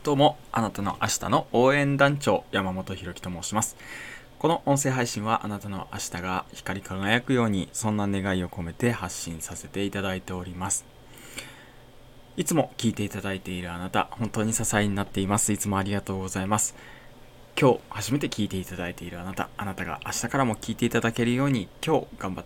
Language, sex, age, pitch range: Japanese, male, 20-39, 95-125 Hz